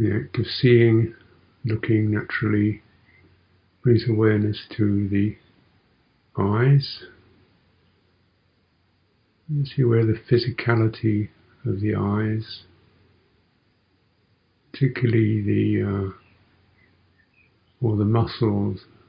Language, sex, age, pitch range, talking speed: English, male, 50-69, 95-115 Hz, 80 wpm